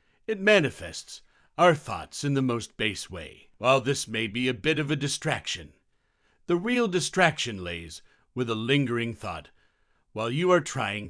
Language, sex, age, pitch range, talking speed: Hindi, male, 50-69, 105-155 Hz, 160 wpm